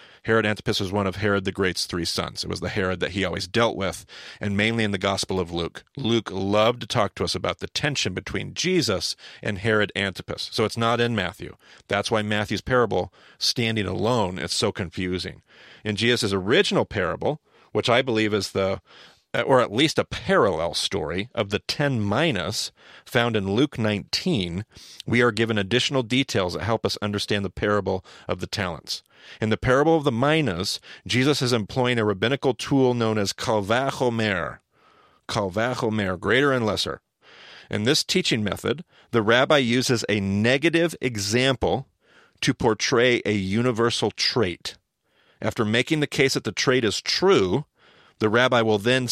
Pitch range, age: 100-125 Hz, 40-59